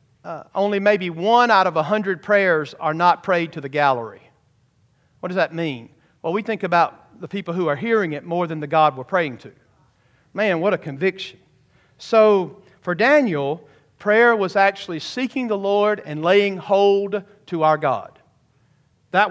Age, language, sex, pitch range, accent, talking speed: 50-69, English, male, 150-205 Hz, American, 175 wpm